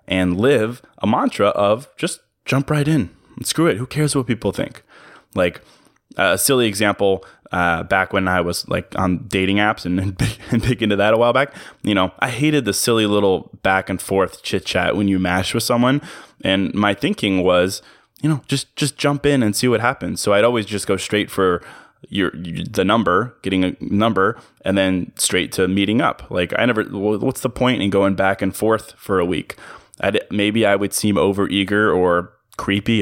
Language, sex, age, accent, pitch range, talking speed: English, male, 20-39, American, 95-115 Hz, 200 wpm